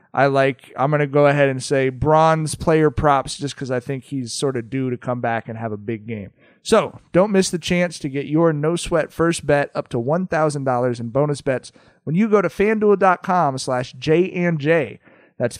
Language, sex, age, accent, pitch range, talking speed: English, male, 30-49, American, 135-170 Hz, 210 wpm